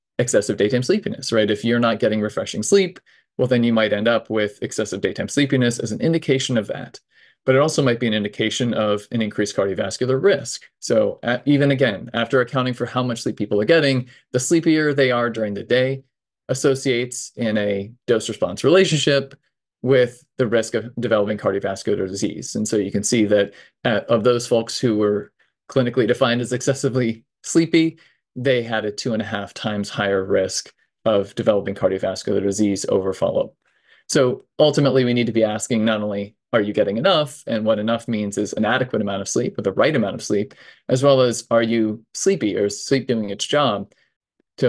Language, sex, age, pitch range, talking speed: English, male, 20-39, 105-135 Hz, 195 wpm